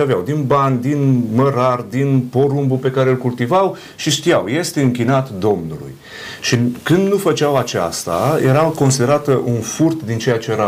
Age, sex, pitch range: 30-49, male, 125-160 Hz